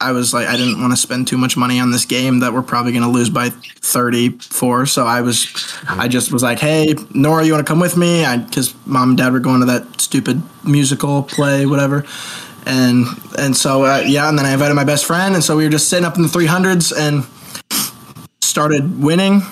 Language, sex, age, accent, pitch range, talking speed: English, male, 20-39, American, 125-155 Hz, 230 wpm